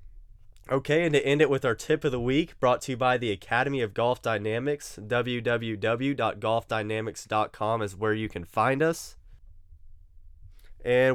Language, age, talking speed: English, 20-39, 150 wpm